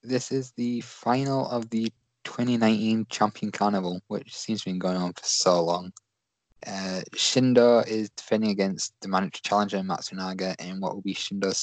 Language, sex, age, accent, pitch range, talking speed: English, male, 20-39, British, 95-115 Hz, 170 wpm